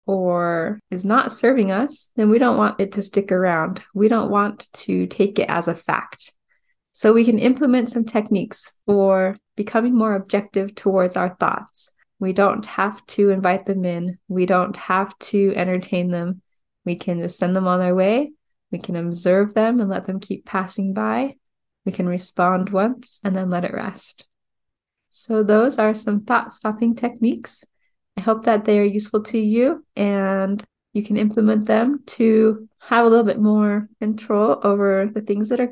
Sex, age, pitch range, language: female, 20-39, 195-230 Hz, English